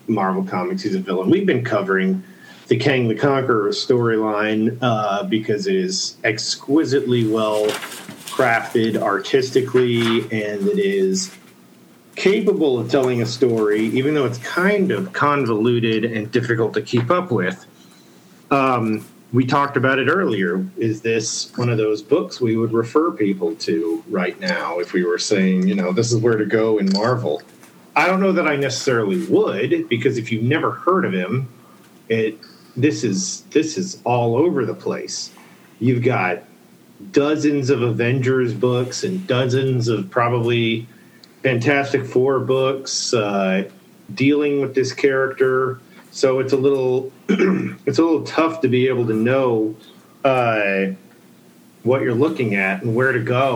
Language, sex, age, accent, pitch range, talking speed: English, male, 40-59, American, 110-145 Hz, 150 wpm